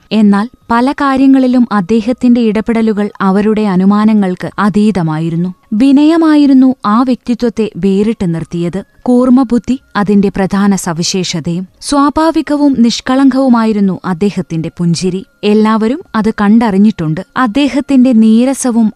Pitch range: 195-265 Hz